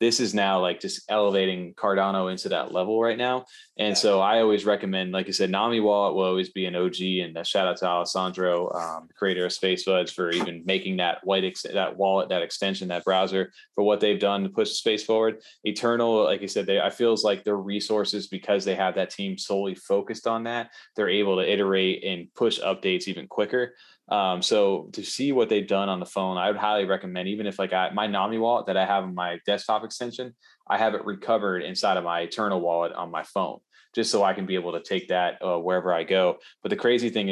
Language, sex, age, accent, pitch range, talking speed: English, male, 20-39, American, 90-105 Hz, 230 wpm